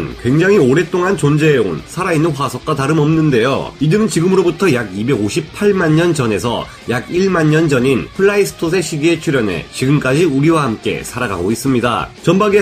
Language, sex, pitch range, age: Korean, male, 140-195 Hz, 30-49